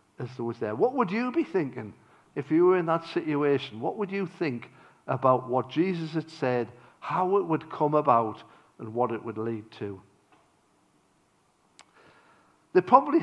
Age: 50-69